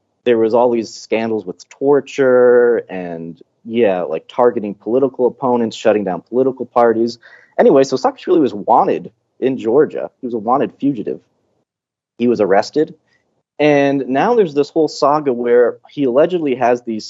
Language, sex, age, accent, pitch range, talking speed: English, male, 30-49, American, 110-140 Hz, 150 wpm